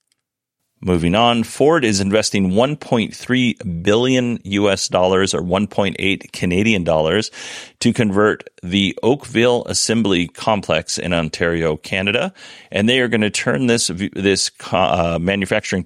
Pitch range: 90-115 Hz